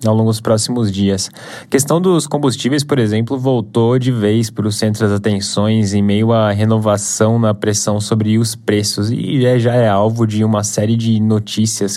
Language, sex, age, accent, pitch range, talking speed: Portuguese, male, 10-29, Brazilian, 105-120 Hz, 185 wpm